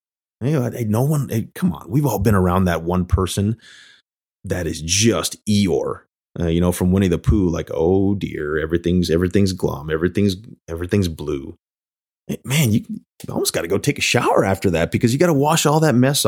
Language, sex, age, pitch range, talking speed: English, male, 30-49, 90-110 Hz, 205 wpm